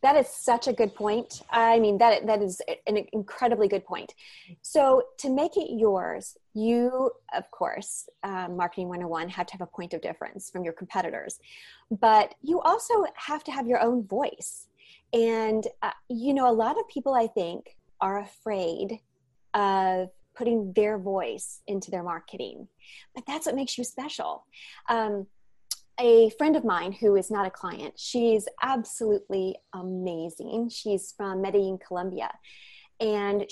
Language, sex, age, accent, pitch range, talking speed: English, female, 30-49, American, 185-235 Hz, 160 wpm